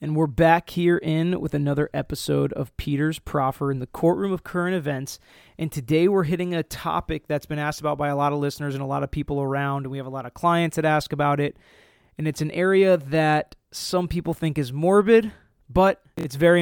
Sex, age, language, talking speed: male, 20-39, English, 225 wpm